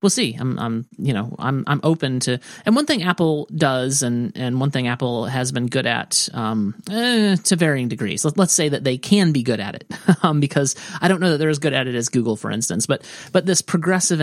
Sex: male